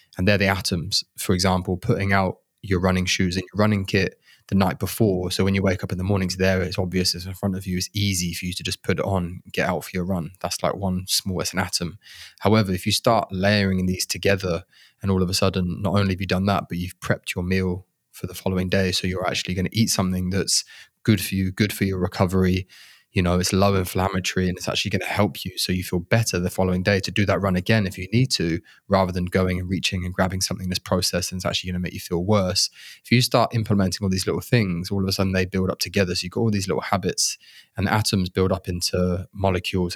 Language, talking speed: English, 260 wpm